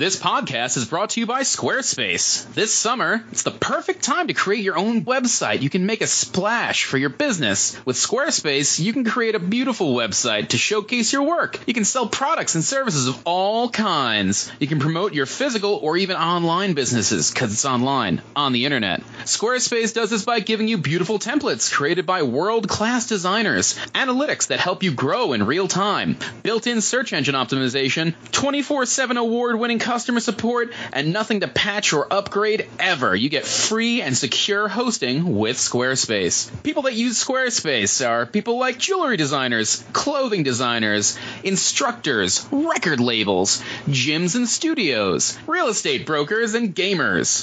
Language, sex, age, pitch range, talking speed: English, male, 30-49, 150-240 Hz, 160 wpm